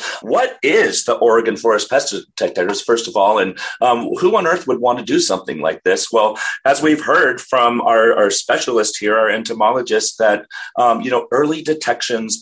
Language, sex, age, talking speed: English, male, 30-49, 190 wpm